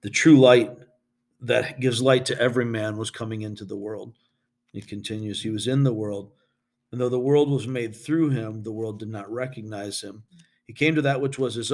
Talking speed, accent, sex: 215 wpm, American, male